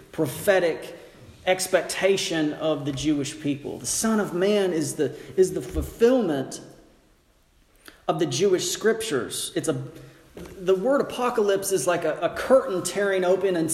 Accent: American